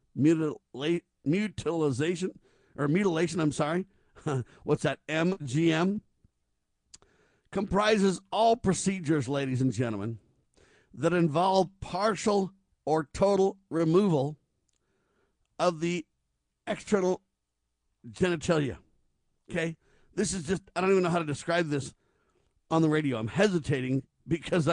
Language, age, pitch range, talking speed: English, 50-69, 125-175 Hz, 100 wpm